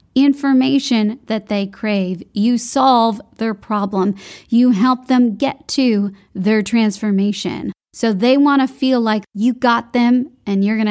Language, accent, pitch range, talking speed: English, American, 215-260 Hz, 150 wpm